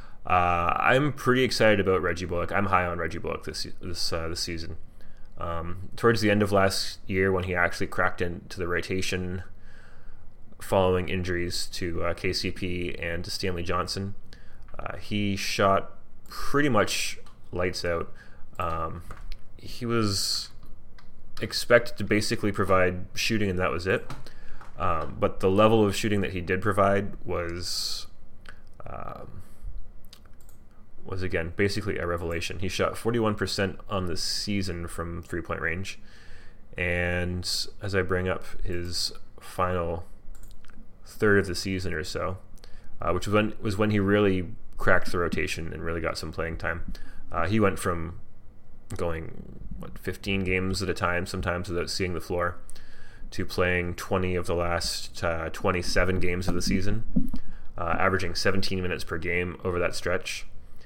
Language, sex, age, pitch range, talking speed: English, male, 20-39, 90-100 Hz, 150 wpm